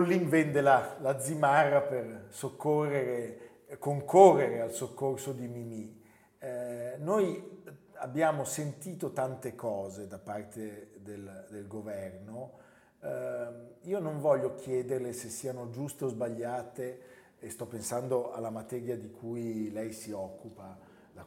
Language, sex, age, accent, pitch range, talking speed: Italian, male, 40-59, native, 115-145 Hz, 120 wpm